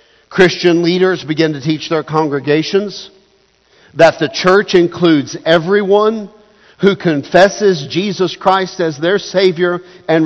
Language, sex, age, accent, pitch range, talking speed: English, male, 50-69, American, 160-200 Hz, 115 wpm